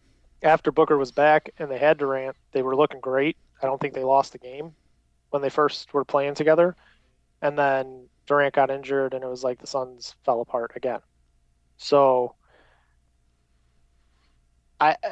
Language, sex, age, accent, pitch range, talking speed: English, male, 30-49, American, 120-145 Hz, 165 wpm